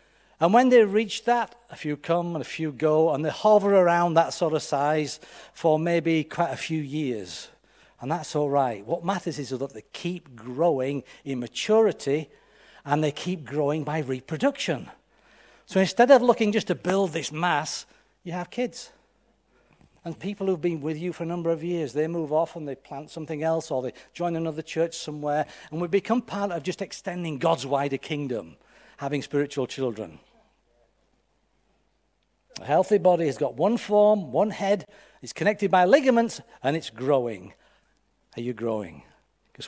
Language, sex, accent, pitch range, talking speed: English, male, British, 145-200 Hz, 175 wpm